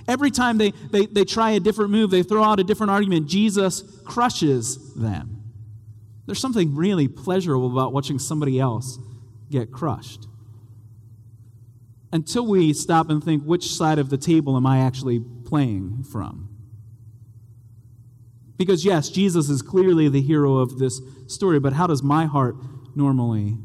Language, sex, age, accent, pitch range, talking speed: English, male, 30-49, American, 120-180 Hz, 150 wpm